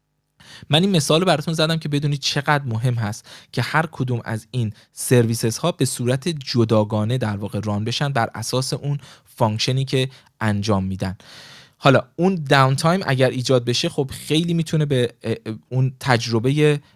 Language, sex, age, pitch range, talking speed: Persian, male, 20-39, 120-150 Hz, 155 wpm